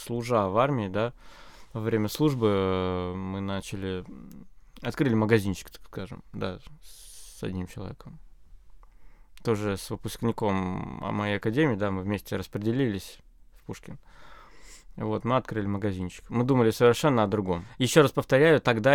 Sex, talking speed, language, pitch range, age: male, 130 wpm, Russian, 100-120 Hz, 20-39